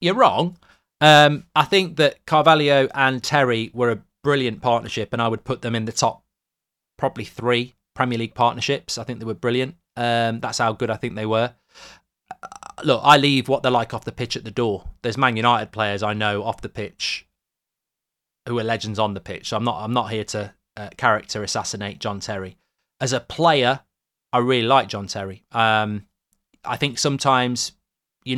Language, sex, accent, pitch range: English, male, British, 110-130 Hz